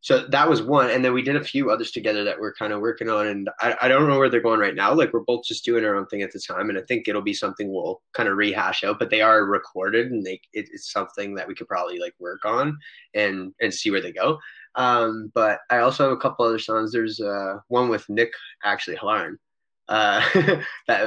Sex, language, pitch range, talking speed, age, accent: male, English, 105-140 Hz, 250 wpm, 20-39, American